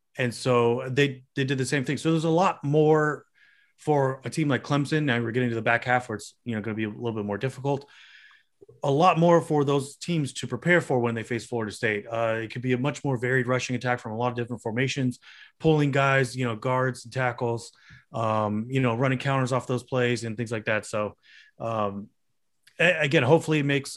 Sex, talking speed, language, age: male, 230 wpm, English, 30-49